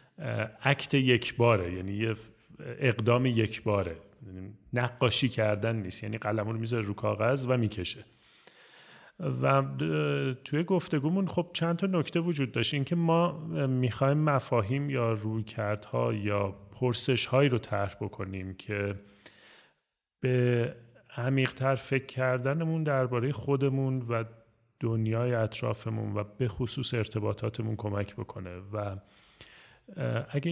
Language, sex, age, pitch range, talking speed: Persian, male, 30-49, 105-130 Hz, 120 wpm